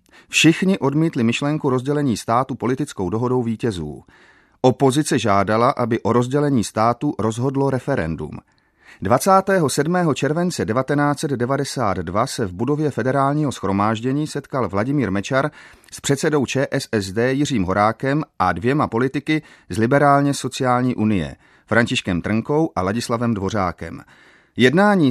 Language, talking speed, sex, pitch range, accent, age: Czech, 110 wpm, male, 110-145 Hz, native, 30-49